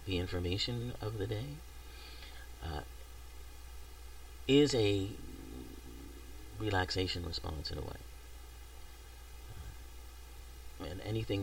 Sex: male